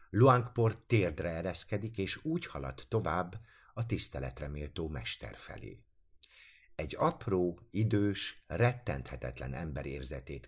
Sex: male